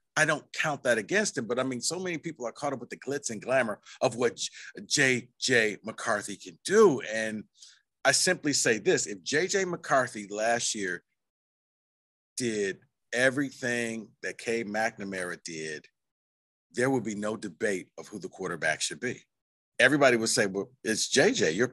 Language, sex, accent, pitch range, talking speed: English, male, American, 115-175 Hz, 165 wpm